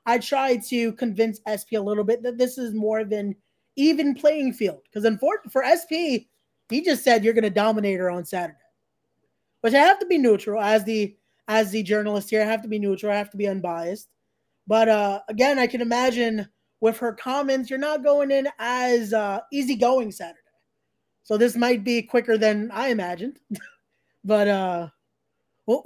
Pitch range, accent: 200-250 Hz, American